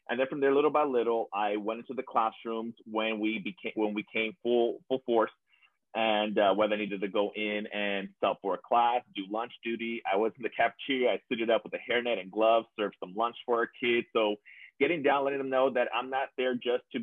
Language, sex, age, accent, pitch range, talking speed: English, male, 30-49, American, 105-130 Hz, 240 wpm